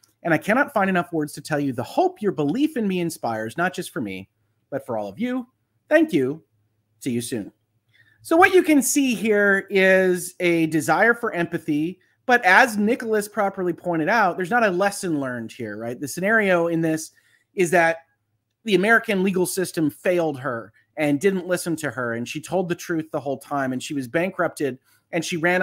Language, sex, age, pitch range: English, male, 30-49, 125-185 Hz